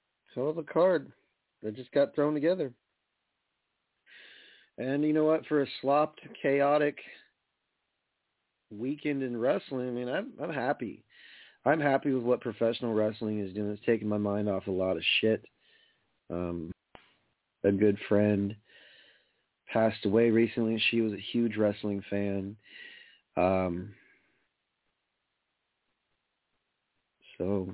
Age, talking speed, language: 40-59, 120 wpm, English